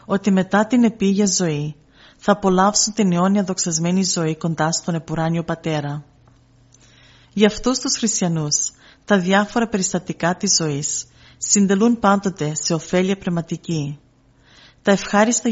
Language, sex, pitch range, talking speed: Greek, female, 150-200 Hz, 120 wpm